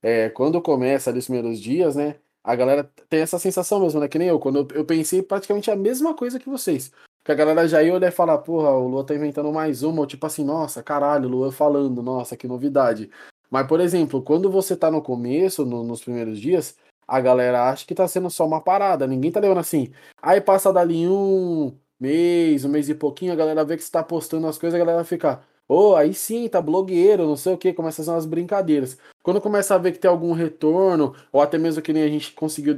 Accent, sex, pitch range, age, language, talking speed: Brazilian, male, 140-180 Hz, 20-39, Portuguese, 240 wpm